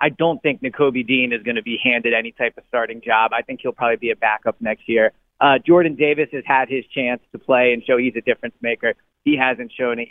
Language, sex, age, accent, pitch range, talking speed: English, male, 40-59, American, 120-155 Hz, 255 wpm